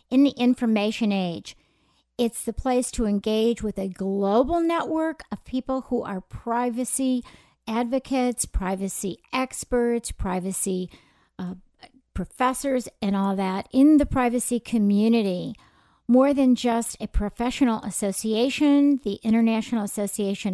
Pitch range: 205-255 Hz